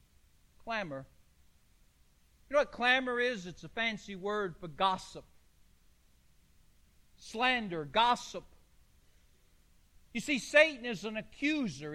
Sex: male